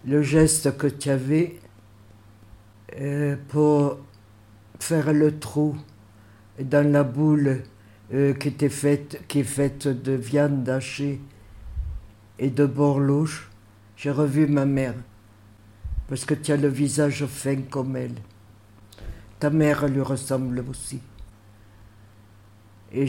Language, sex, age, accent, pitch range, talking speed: French, male, 60-79, French, 105-145 Hz, 110 wpm